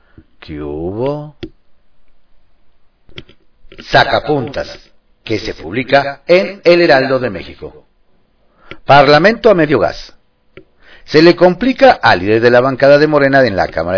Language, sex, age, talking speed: Spanish, male, 50-69, 120 wpm